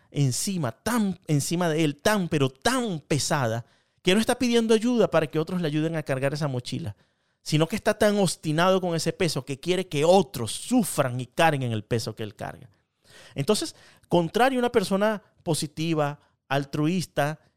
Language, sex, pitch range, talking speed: Spanish, male, 135-185 Hz, 170 wpm